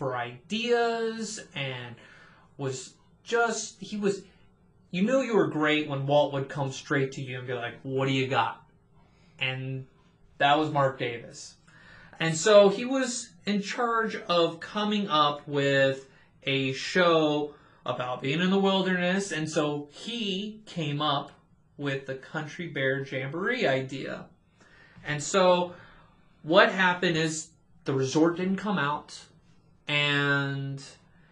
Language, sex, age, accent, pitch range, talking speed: English, male, 30-49, American, 135-170 Hz, 135 wpm